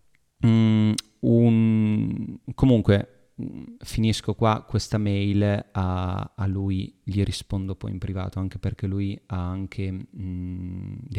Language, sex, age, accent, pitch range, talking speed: Italian, male, 30-49, native, 95-115 Hz, 125 wpm